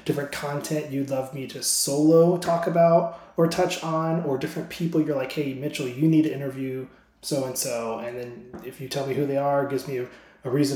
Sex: male